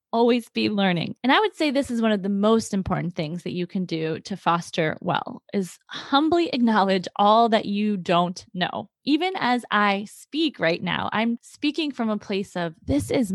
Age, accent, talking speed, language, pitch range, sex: 20-39, American, 200 wpm, English, 190-255 Hz, female